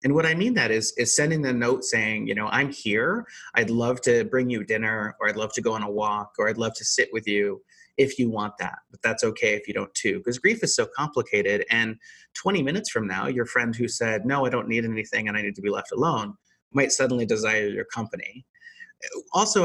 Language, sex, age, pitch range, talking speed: English, male, 30-49, 110-155 Hz, 240 wpm